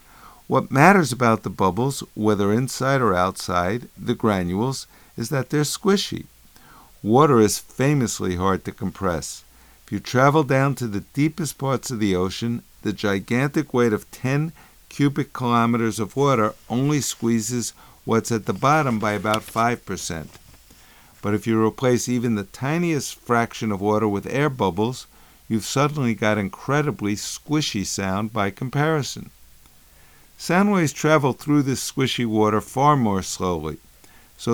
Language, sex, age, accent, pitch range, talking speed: English, male, 50-69, American, 105-135 Hz, 140 wpm